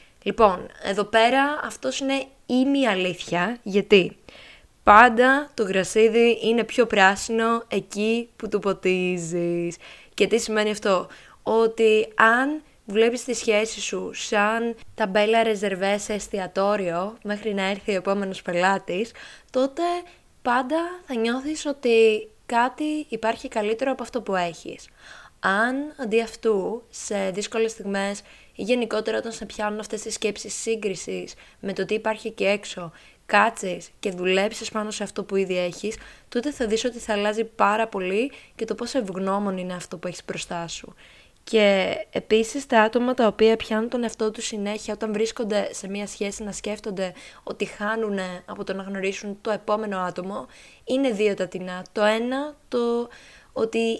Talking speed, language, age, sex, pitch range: 145 wpm, Greek, 20-39, female, 200-235 Hz